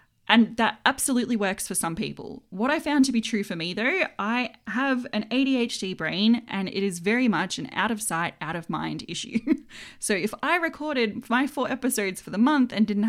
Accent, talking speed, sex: Australian, 210 wpm, female